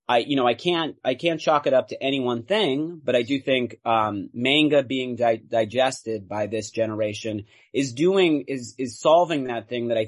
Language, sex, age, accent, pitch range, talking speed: English, male, 30-49, American, 115-145 Hz, 210 wpm